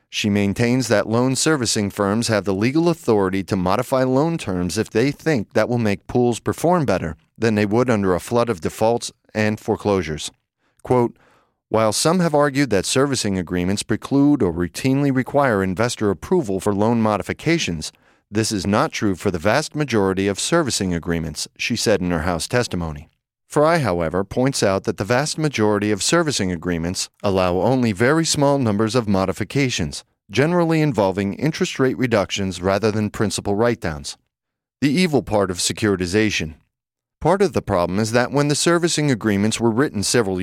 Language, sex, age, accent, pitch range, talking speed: English, male, 40-59, American, 95-130 Hz, 165 wpm